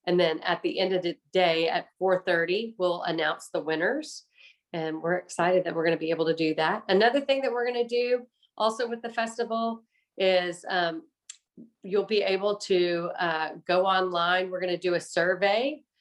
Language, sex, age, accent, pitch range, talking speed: English, female, 40-59, American, 165-200 Hz, 185 wpm